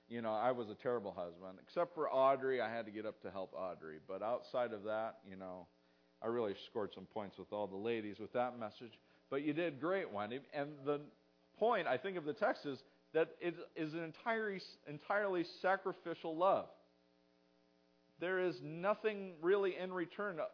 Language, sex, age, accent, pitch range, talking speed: English, male, 40-59, American, 100-140 Hz, 185 wpm